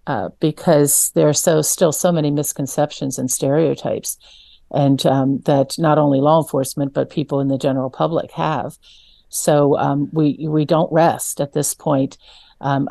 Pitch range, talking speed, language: 140-165 Hz, 165 wpm, English